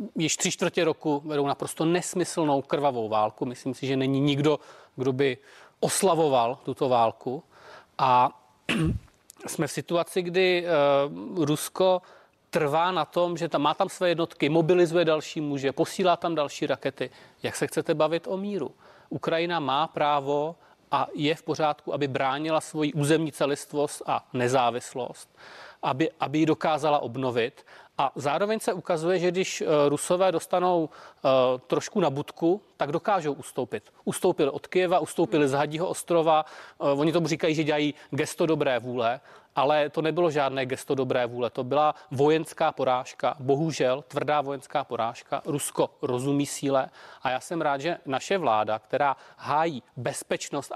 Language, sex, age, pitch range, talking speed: Czech, male, 30-49, 140-170 Hz, 145 wpm